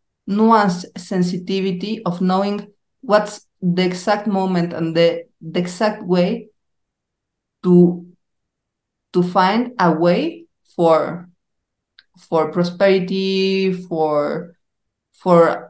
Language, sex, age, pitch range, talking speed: English, female, 40-59, 170-195 Hz, 90 wpm